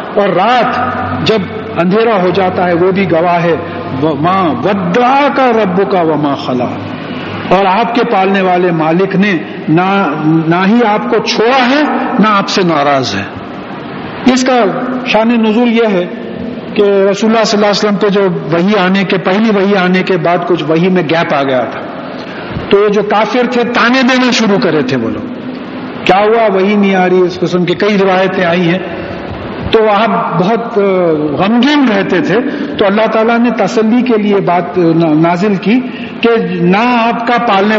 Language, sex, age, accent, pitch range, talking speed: English, male, 50-69, Indian, 185-240 Hz, 150 wpm